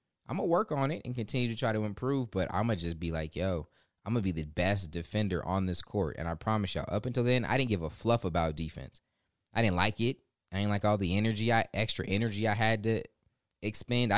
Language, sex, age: English, male, 20-39